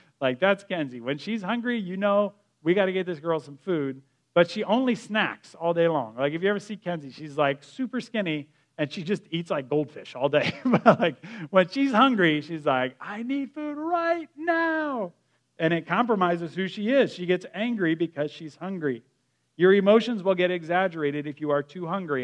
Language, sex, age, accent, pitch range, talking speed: English, male, 40-59, American, 140-180 Hz, 200 wpm